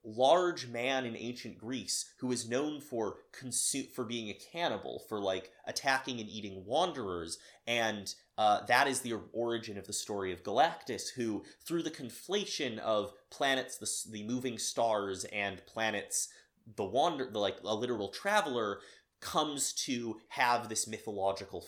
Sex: male